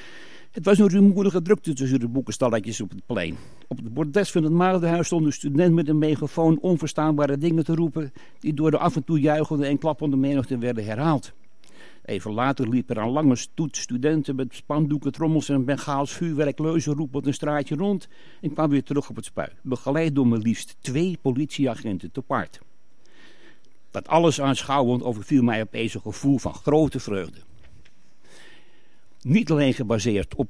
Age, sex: 60-79, male